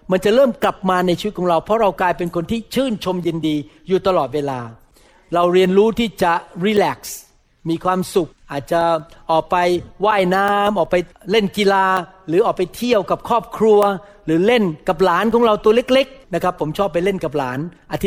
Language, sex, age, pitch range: Thai, male, 60-79, 165-205 Hz